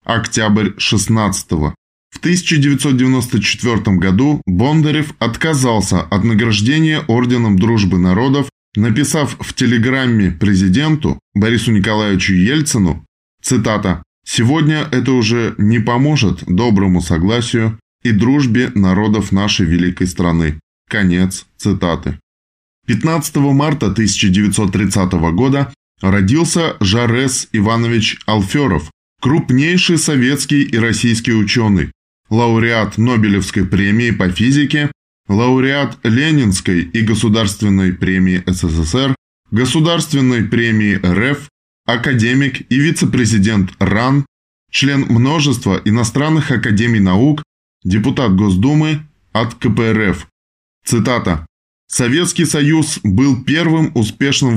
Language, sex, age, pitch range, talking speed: Russian, male, 20-39, 95-135 Hz, 90 wpm